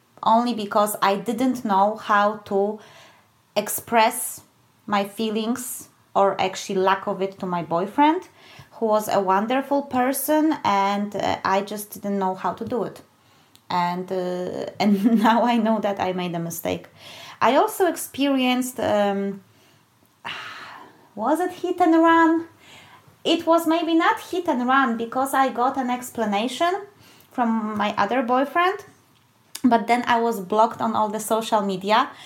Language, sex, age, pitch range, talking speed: English, female, 20-39, 205-260 Hz, 145 wpm